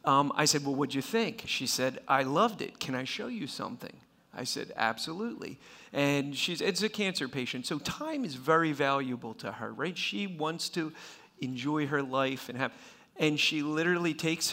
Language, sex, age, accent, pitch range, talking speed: English, male, 40-59, American, 135-160 Hz, 190 wpm